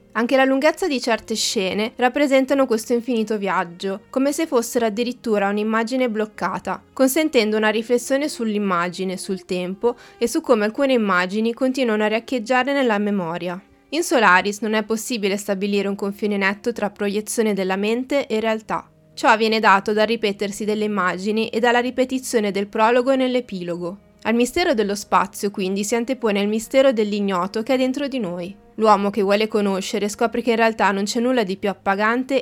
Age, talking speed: 20-39, 165 wpm